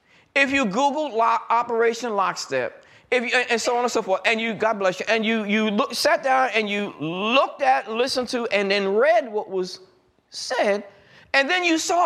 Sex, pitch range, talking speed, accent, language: male, 230-310 Hz, 210 wpm, American, English